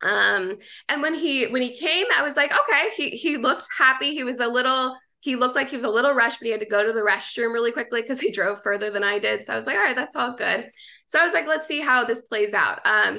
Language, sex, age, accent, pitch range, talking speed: English, female, 20-39, American, 210-285 Hz, 290 wpm